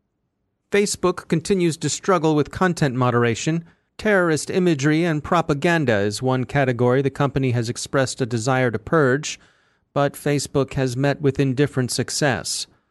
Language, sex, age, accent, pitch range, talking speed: English, male, 30-49, American, 130-155 Hz, 135 wpm